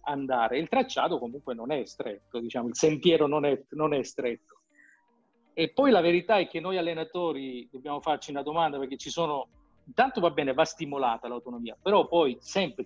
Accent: native